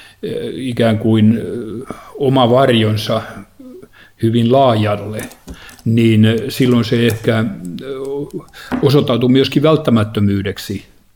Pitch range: 110-130 Hz